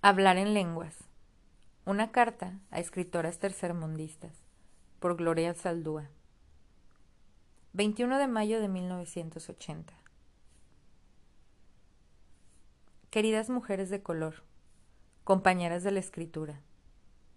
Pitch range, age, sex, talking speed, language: 165-195 Hz, 30-49, female, 85 wpm, Spanish